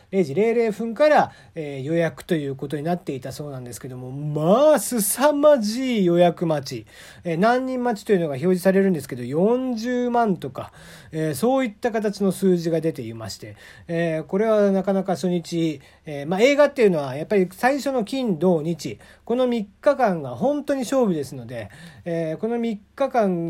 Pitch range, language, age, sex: 145-215 Hz, Japanese, 40-59, male